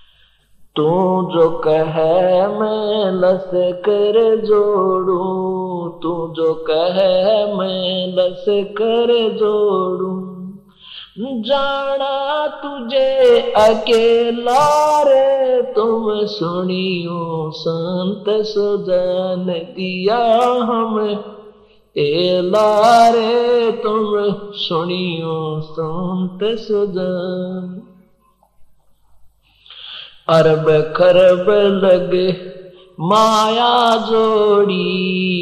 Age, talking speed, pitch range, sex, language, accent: 50-69, 60 wpm, 180-225 Hz, male, Hindi, native